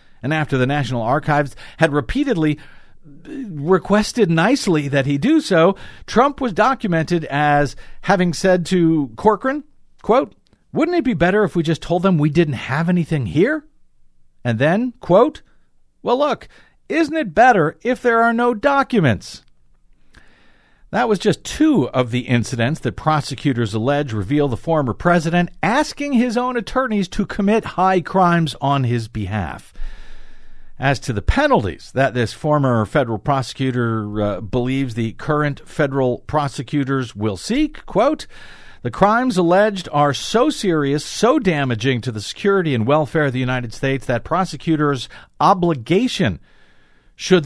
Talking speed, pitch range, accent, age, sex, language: 145 wpm, 125-190 Hz, American, 50-69, male, English